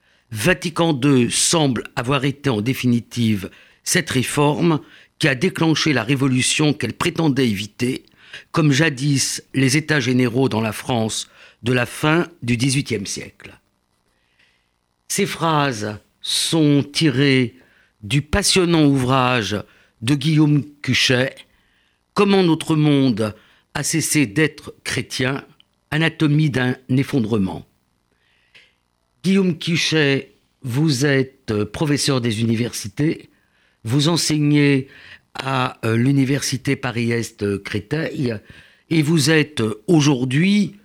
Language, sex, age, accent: French, male, 50-69, French